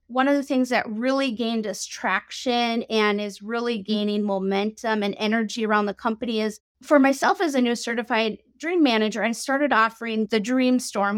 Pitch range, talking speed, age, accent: 215-255 Hz, 185 wpm, 30-49, American